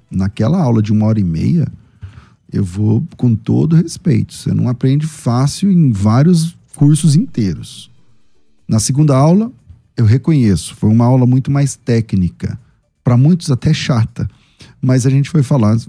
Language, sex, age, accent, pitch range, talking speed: Portuguese, male, 40-59, Brazilian, 110-145 Hz, 150 wpm